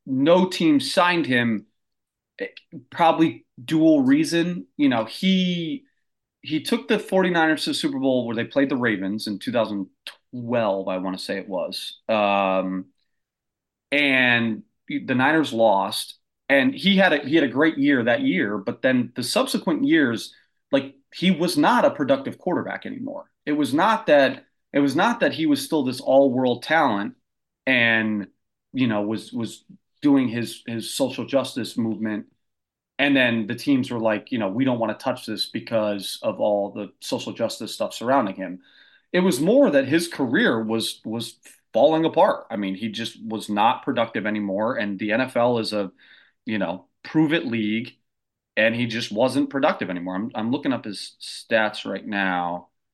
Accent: American